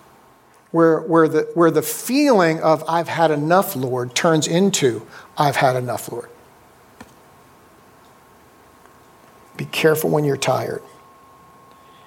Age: 50-69